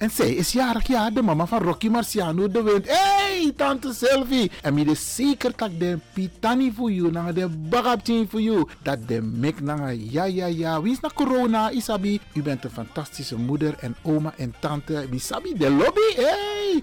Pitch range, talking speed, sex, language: 155-240 Hz, 205 wpm, male, Dutch